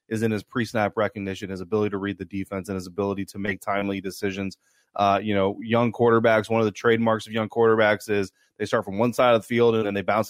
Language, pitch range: English, 100-115 Hz